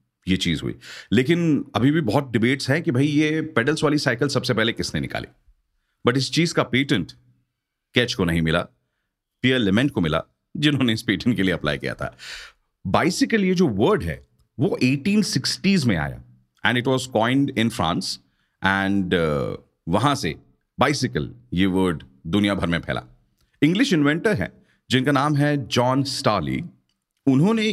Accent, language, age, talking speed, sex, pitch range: native, Hindi, 40-59, 155 wpm, male, 90-130 Hz